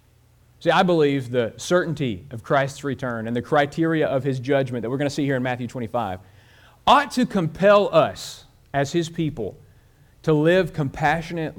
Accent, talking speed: American, 170 wpm